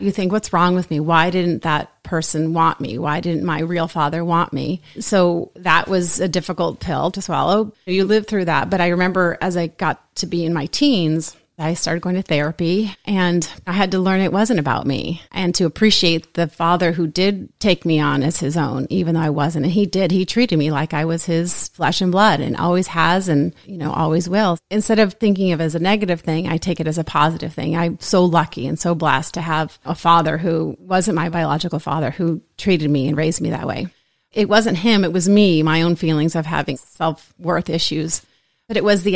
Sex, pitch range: female, 160-190 Hz